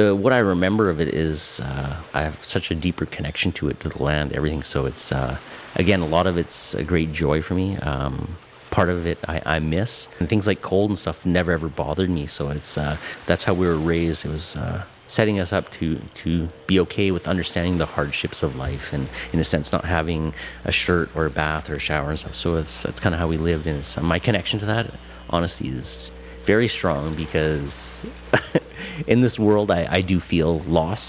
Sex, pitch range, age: male, 75-95 Hz, 30-49